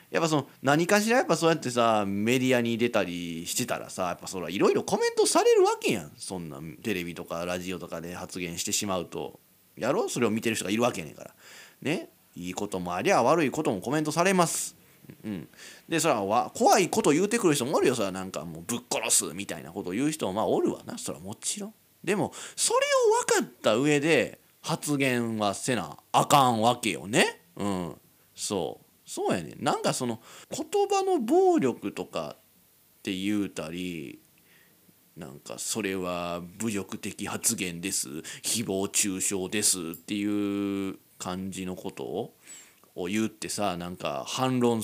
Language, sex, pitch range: Japanese, male, 95-150 Hz